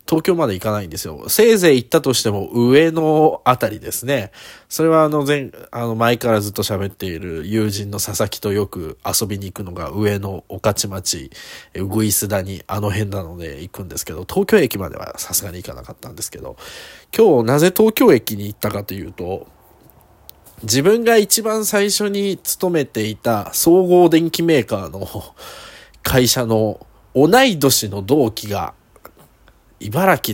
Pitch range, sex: 100-150 Hz, male